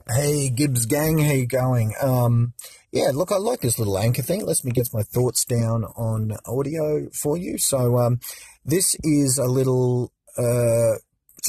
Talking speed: 165 wpm